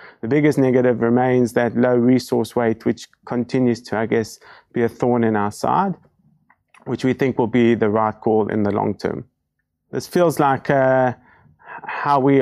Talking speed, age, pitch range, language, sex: 180 wpm, 20-39, 120-140 Hz, English, male